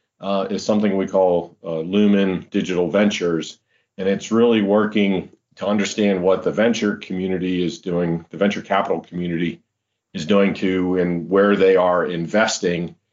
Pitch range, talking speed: 85-105 Hz, 150 wpm